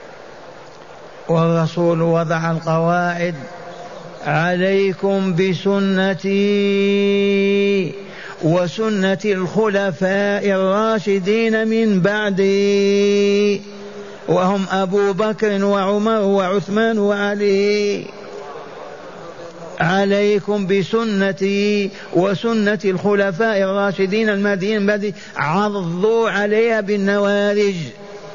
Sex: male